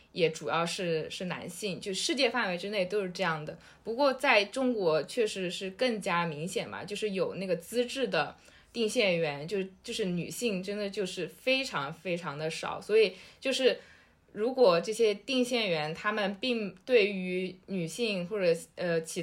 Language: Chinese